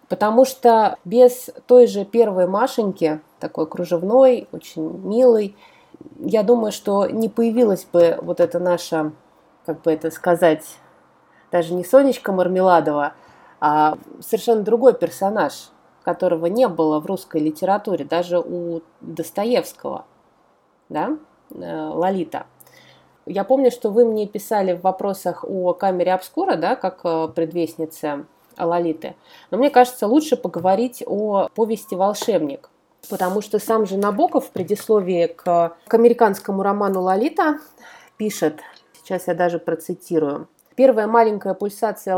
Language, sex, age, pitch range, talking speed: Russian, female, 30-49, 175-235 Hz, 120 wpm